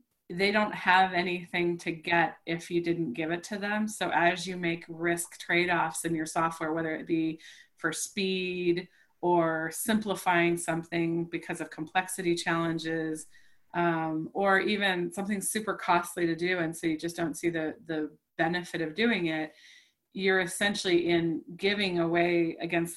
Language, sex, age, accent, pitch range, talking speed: English, female, 30-49, American, 165-195 Hz, 155 wpm